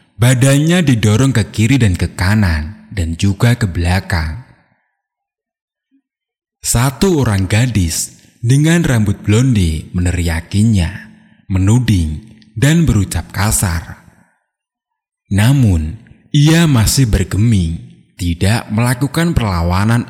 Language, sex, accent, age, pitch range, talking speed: Indonesian, male, native, 30-49, 90-145 Hz, 85 wpm